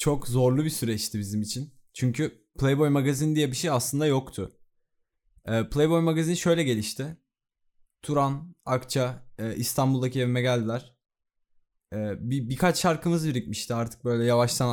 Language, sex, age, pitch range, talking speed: Turkish, male, 20-39, 120-150 Hz, 120 wpm